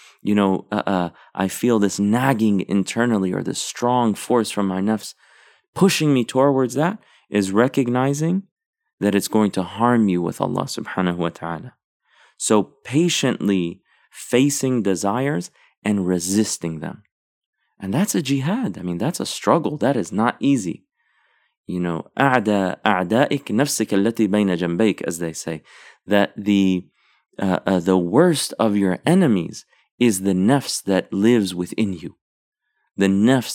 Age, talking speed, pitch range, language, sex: 30-49, 145 wpm, 95-130 Hz, English, male